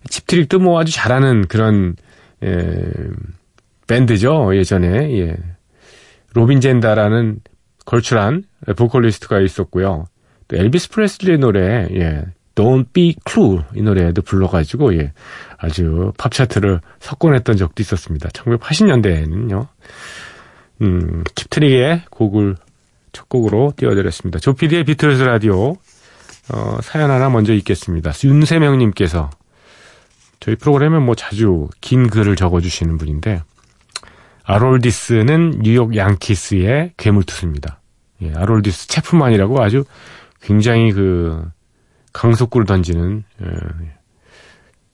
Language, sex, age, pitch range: Korean, male, 40-59, 90-130 Hz